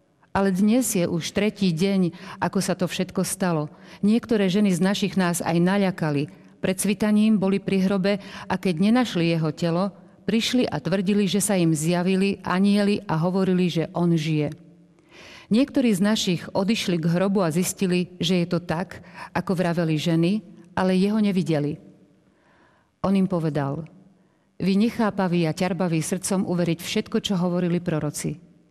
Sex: female